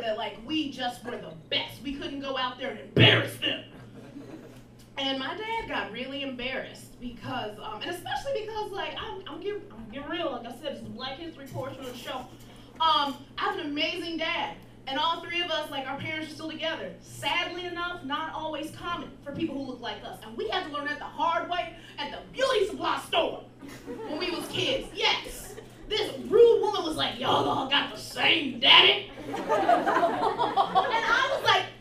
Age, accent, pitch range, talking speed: 20-39, American, 275-380 Hz, 200 wpm